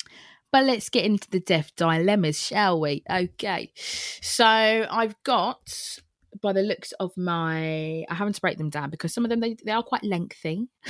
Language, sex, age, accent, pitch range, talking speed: English, female, 20-39, British, 165-225 Hz, 180 wpm